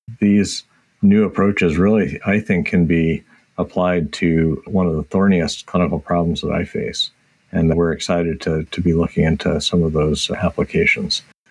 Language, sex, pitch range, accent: English, male, 85-100 Hz, American